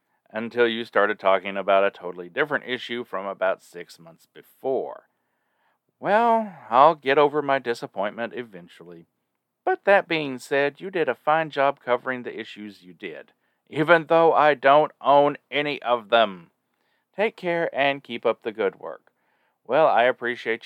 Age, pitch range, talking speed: 40-59, 105-155 Hz, 155 wpm